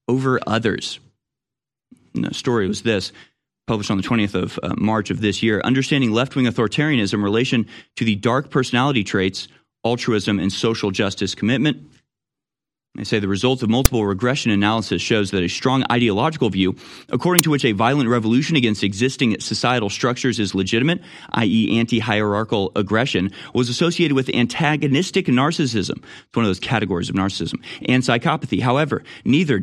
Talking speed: 155 wpm